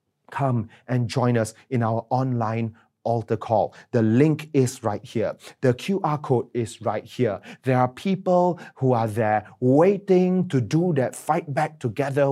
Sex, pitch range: male, 115-155 Hz